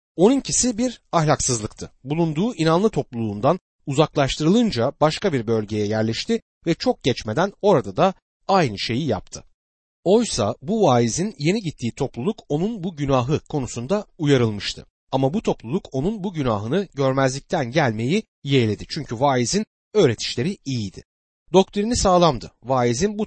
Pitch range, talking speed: 115-185 Hz, 120 wpm